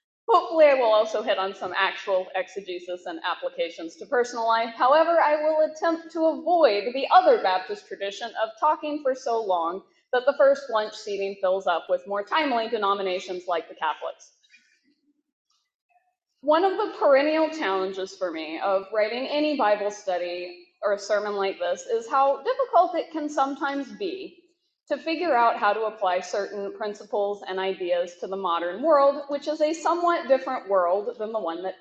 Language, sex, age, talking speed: English, female, 20-39, 170 wpm